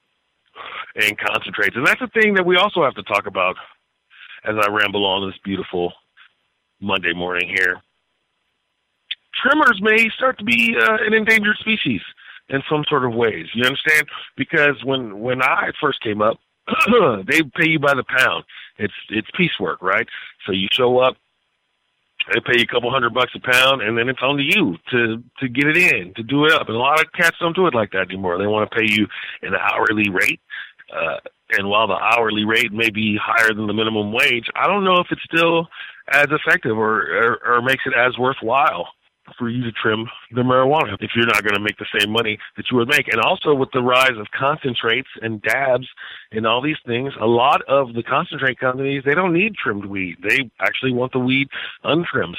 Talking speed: 205 wpm